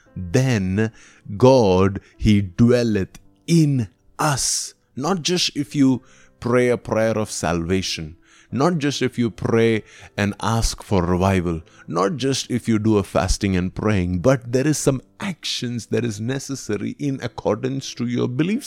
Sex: male